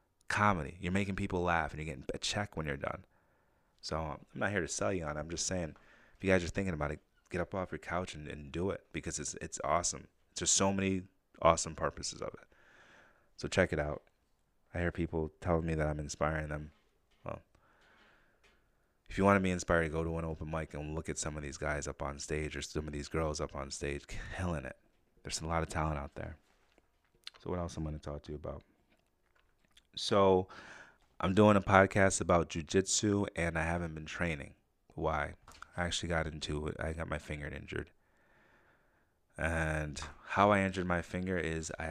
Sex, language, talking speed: male, English, 205 wpm